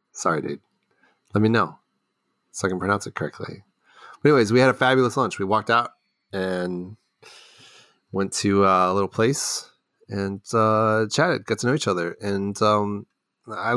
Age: 30-49